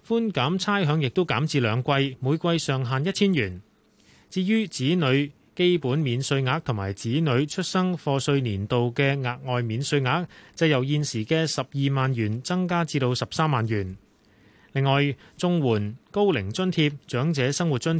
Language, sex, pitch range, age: Chinese, male, 125-170 Hz, 30-49